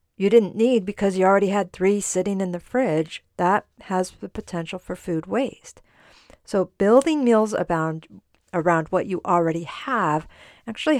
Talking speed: 160 wpm